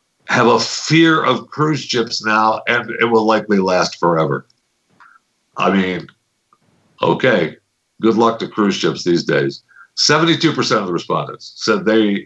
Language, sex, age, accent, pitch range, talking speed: English, male, 60-79, American, 100-140 Hz, 140 wpm